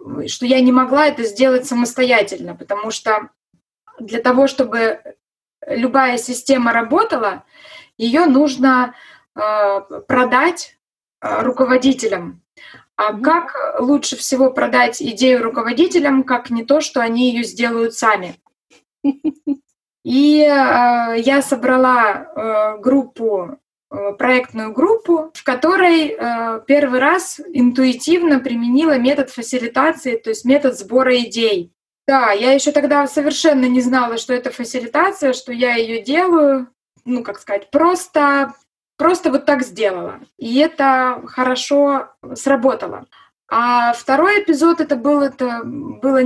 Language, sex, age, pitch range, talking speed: Russian, female, 20-39, 235-285 Hz, 115 wpm